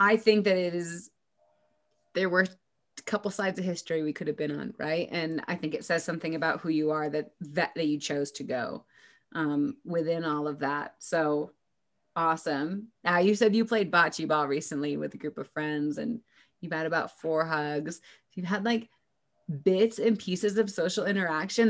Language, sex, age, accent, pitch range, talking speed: English, female, 30-49, American, 155-200 Hz, 195 wpm